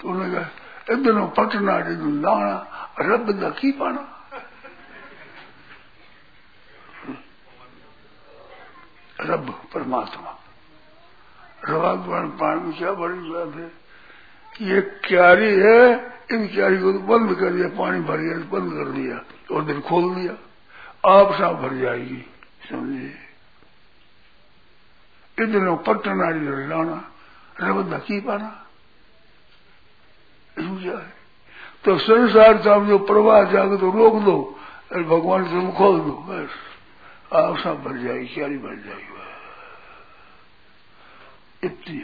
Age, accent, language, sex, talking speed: 60-79, native, Hindi, male, 90 wpm